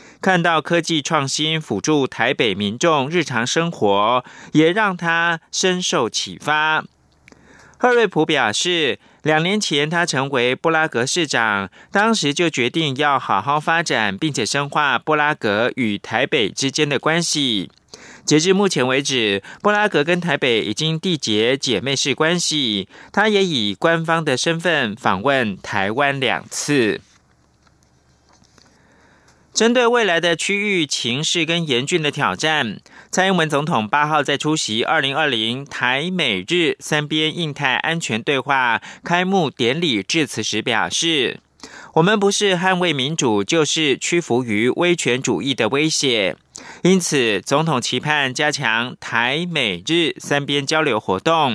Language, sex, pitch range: German, male, 130-170 Hz